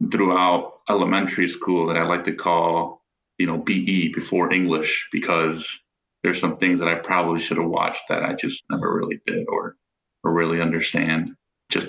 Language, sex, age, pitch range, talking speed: English, male, 30-49, 85-105 Hz, 170 wpm